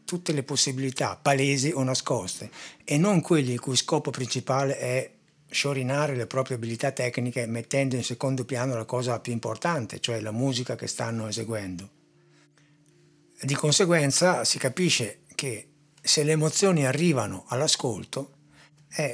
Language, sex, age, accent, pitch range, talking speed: Italian, male, 60-79, native, 125-150 Hz, 135 wpm